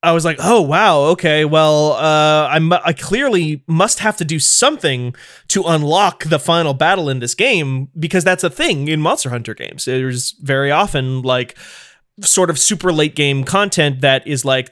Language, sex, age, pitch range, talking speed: English, male, 20-39, 135-170 Hz, 190 wpm